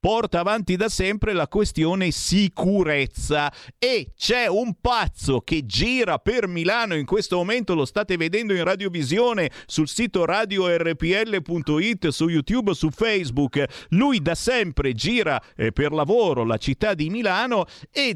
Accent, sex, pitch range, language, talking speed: native, male, 135-200 Hz, Italian, 140 wpm